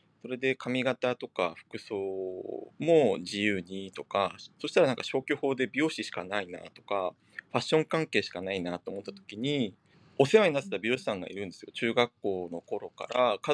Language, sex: Japanese, male